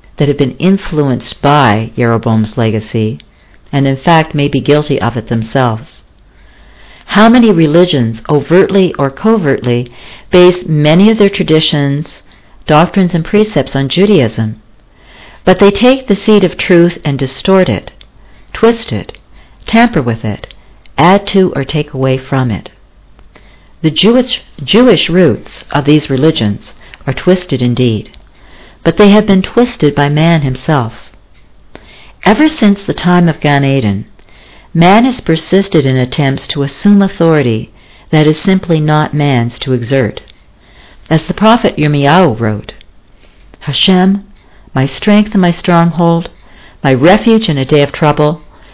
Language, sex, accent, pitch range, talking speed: English, female, American, 135-185 Hz, 140 wpm